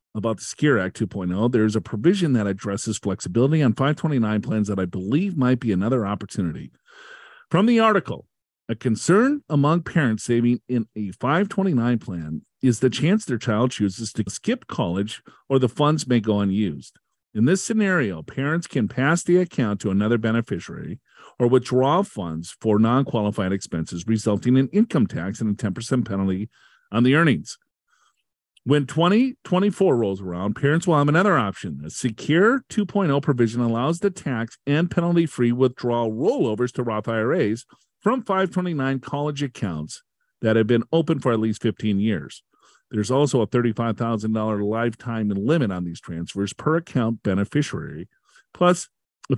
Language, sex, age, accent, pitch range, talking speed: English, male, 50-69, American, 105-160 Hz, 155 wpm